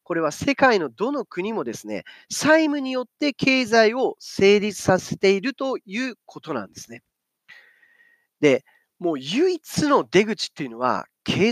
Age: 40-59